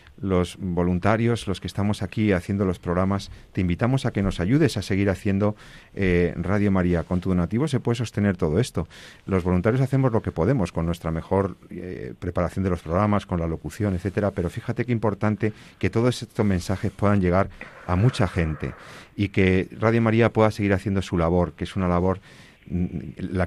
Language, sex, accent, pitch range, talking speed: Spanish, male, Spanish, 85-105 Hz, 190 wpm